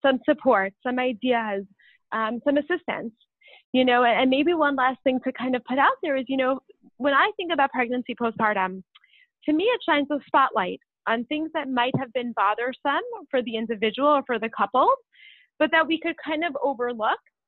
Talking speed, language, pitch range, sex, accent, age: 190 wpm, English, 225-280 Hz, female, American, 20-39